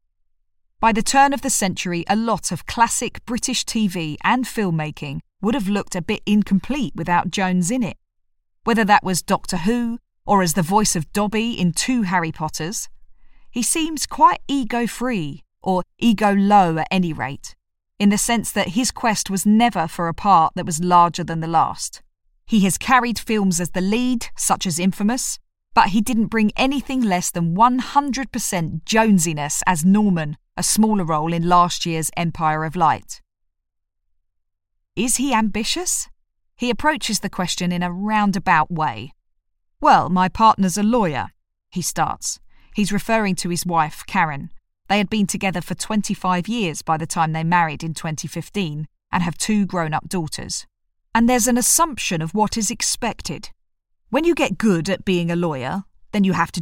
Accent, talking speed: British, 165 wpm